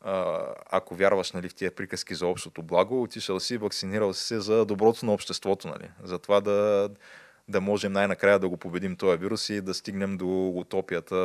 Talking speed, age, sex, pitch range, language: 185 wpm, 20-39, male, 95-120 Hz, Bulgarian